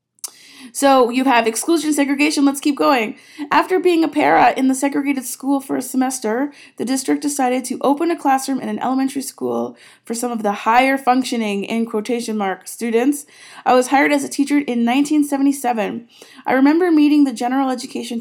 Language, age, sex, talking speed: English, 20-39, female, 180 wpm